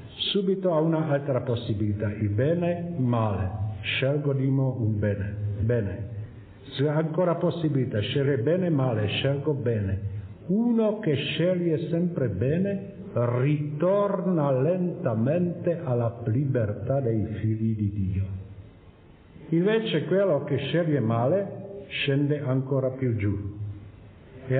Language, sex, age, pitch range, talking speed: Italian, male, 50-69, 105-165 Hz, 110 wpm